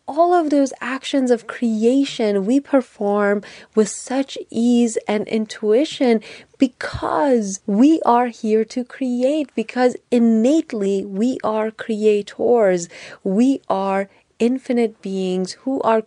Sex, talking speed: female, 110 wpm